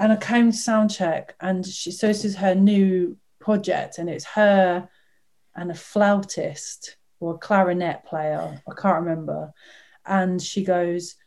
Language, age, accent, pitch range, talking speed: English, 30-49, British, 185-230 Hz, 150 wpm